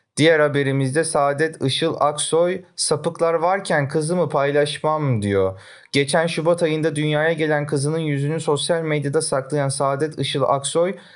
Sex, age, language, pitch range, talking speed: male, 30-49, Turkish, 135-165 Hz, 125 wpm